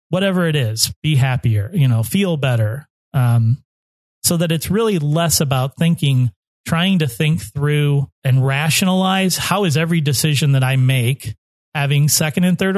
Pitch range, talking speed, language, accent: 125-155 Hz, 160 wpm, English, American